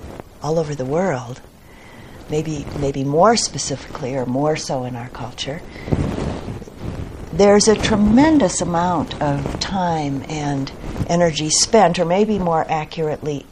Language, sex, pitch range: English, female, 145-180 Hz